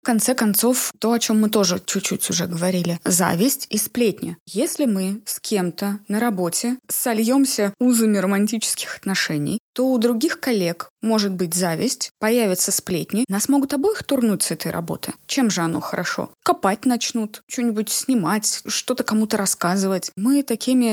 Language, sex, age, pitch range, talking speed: Russian, female, 20-39, 180-235 Hz, 150 wpm